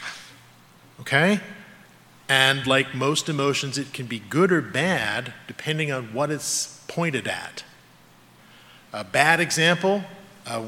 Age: 40-59